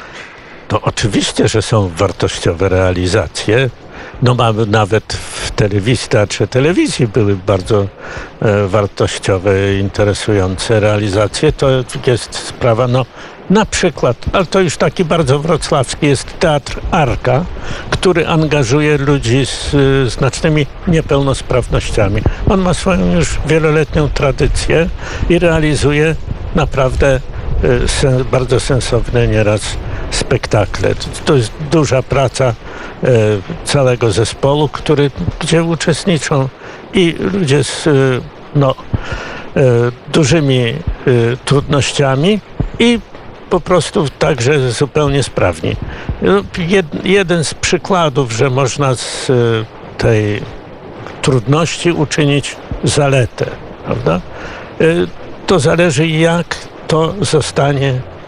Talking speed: 95 wpm